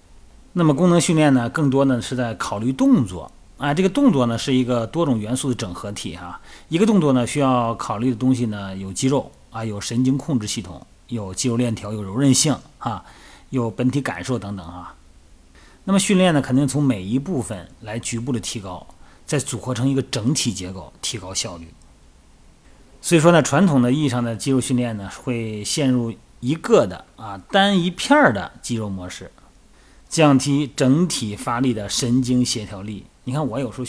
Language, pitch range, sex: Chinese, 105-140 Hz, male